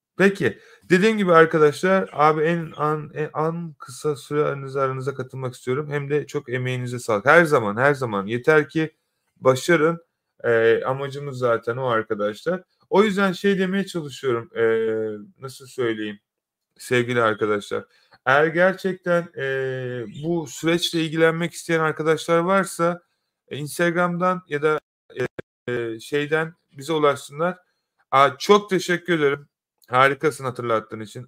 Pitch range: 130-165 Hz